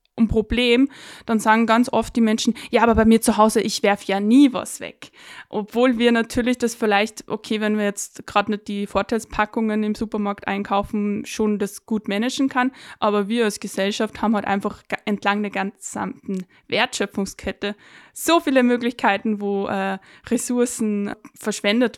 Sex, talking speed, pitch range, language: female, 160 wpm, 210-240 Hz, German